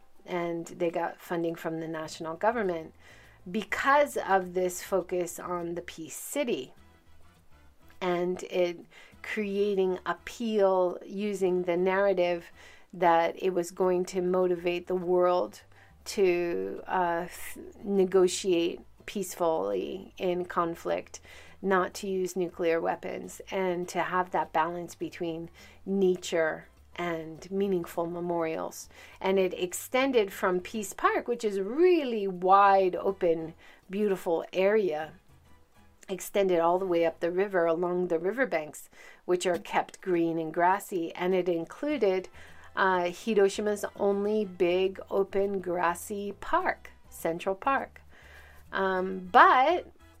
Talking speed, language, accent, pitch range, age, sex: 115 wpm, English, American, 170-195 Hz, 40-59, female